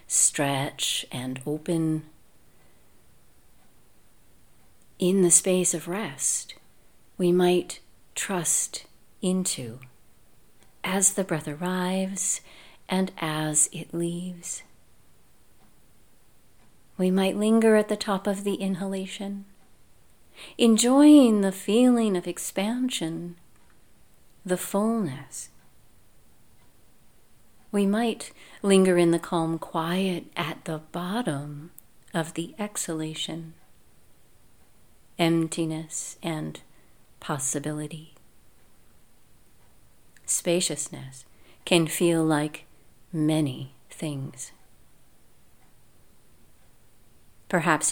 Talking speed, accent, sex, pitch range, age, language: 75 wpm, American, female, 155-195 Hz, 40-59, English